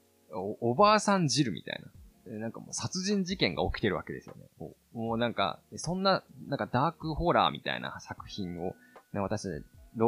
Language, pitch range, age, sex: Japanese, 100-165 Hz, 20-39, male